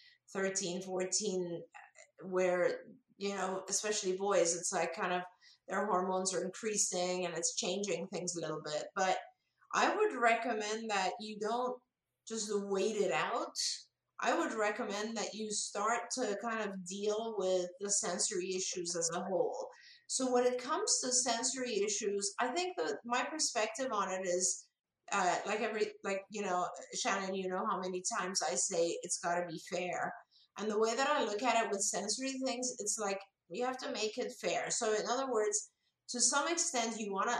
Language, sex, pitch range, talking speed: English, female, 185-240 Hz, 180 wpm